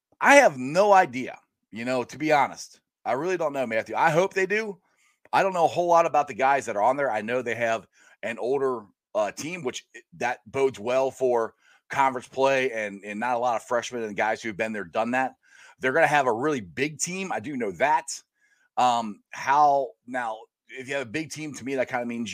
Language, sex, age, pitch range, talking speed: English, male, 30-49, 105-140 Hz, 235 wpm